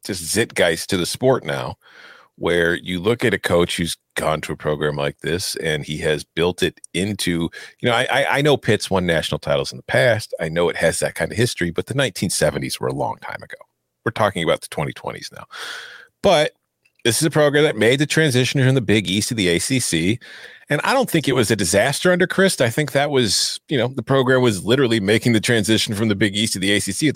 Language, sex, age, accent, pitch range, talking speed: English, male, 40-59, American, 100-135 Hz, 235 wpm